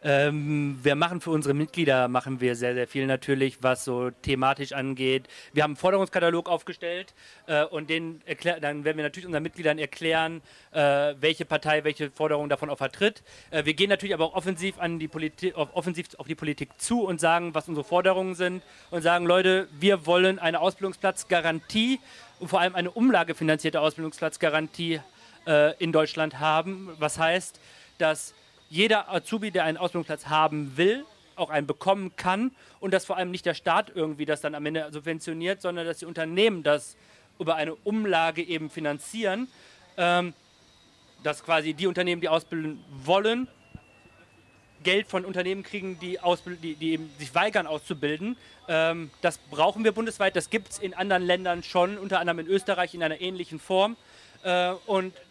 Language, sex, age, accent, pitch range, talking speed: German, male, 40-59, German, 150-185 Hz, 155 wpm